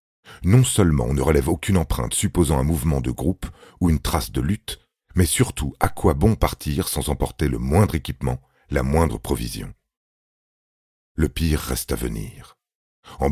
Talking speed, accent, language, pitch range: 165 wpm, French, French, 70-95 Hz